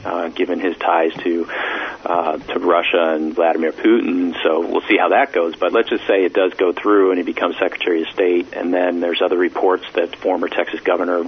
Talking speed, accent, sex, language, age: 220 wpm, American, male, English, 40-59